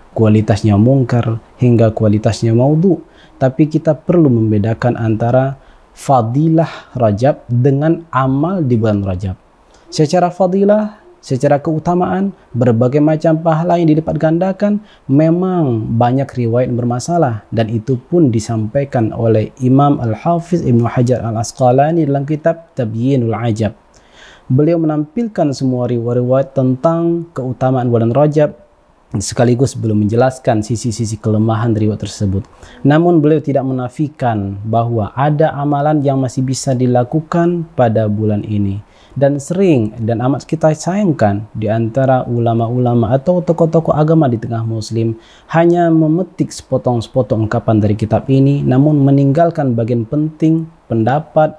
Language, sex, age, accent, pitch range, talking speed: Indonesian, male, 30-49, native, 115-155 Hz, 115 wpm